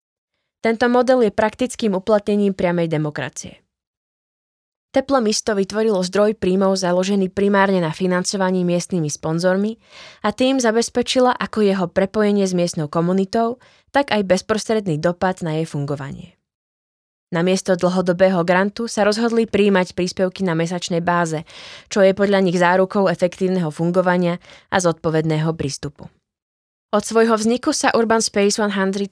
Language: Slovak